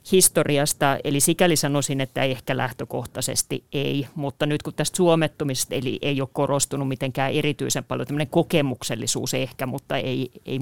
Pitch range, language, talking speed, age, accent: 130-145 Hz, Finnish, 145 wpm, 30-49, native